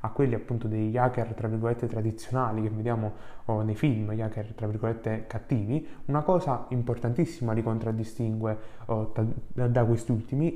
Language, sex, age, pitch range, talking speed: Italian, male, 20-39, 110-130 Hz, 155 wpm